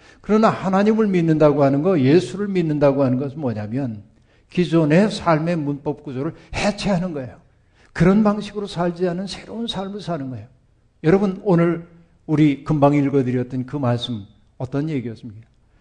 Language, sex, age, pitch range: Korean, male, 60-79, 120-160 Hz